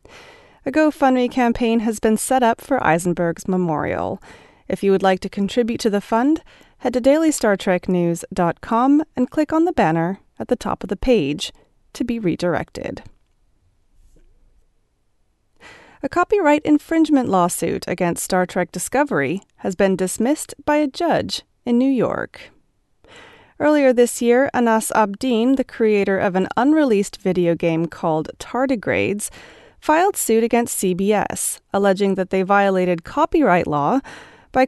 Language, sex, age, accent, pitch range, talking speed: English, female, 30-49, American, 180-260 Hz, 135 wpm